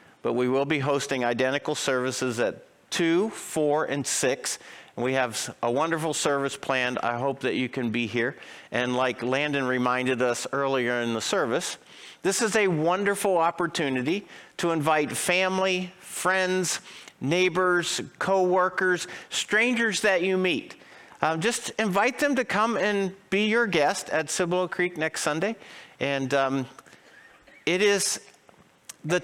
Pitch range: 140-190 Hz